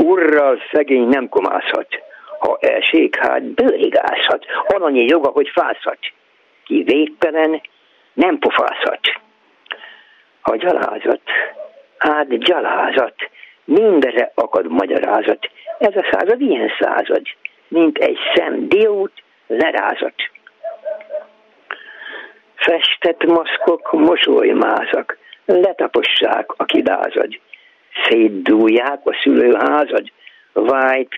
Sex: male